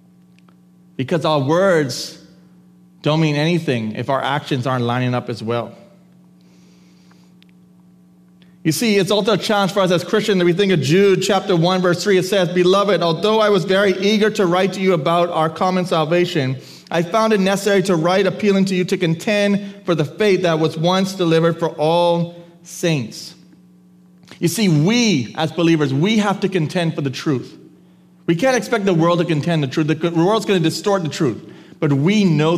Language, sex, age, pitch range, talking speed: English, male, 30-49, 130-185 Hz, 185 wpm